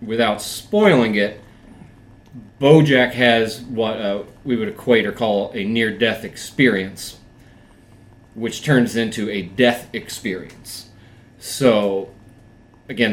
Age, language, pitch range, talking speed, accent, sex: 30-49, English, 105-125 Hz, 105 wpm, American, male